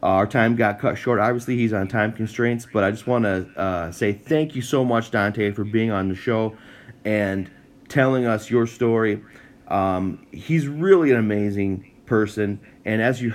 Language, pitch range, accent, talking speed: English, 100-125 Hz, American, 185 wpm